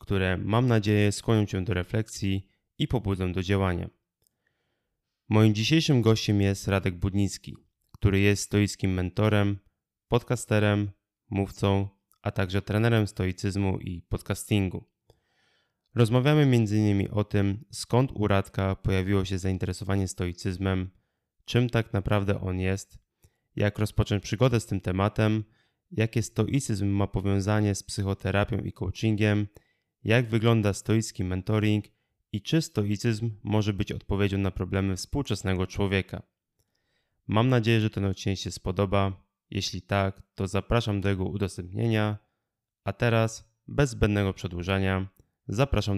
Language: Polish